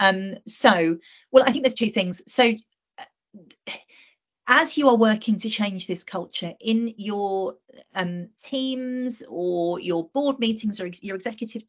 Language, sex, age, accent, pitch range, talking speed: English, female, 40-59, British, 175-230 Hz, 155 wpm